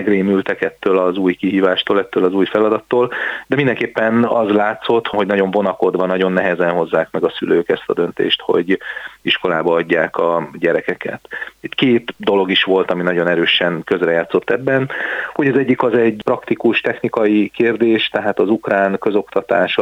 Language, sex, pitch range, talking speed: Hungarian, male, 90-105 Hz, 155 wpm